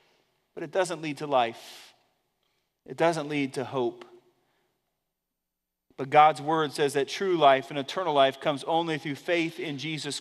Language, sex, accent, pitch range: English, male, American, 150-200 Hz